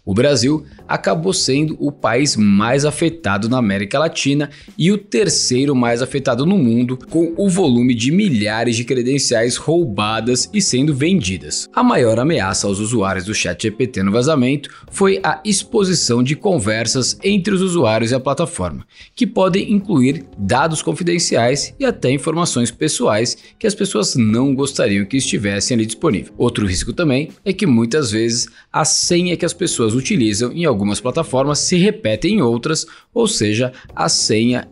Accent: Brazilian